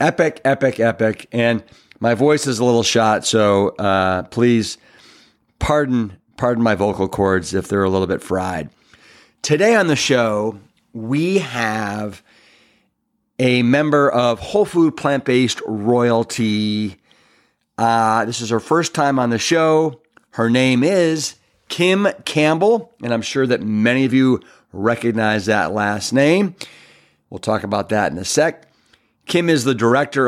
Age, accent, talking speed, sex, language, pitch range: 40-59, American, 145 wpm, male, English, 110-140 Hz